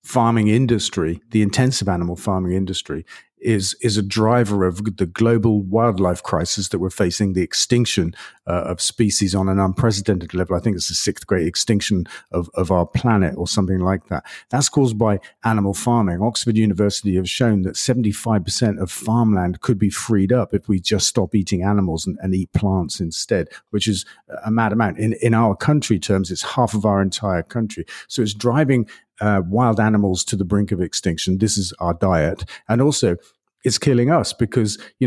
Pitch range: 95-115 Hz